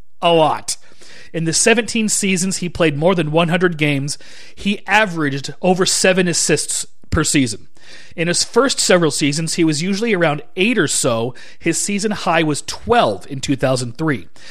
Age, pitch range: 30-49, 150-195 Hz